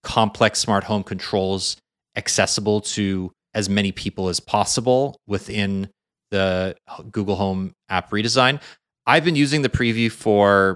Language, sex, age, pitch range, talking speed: English, male, 30-49, 95-110 Hz, 130 wpm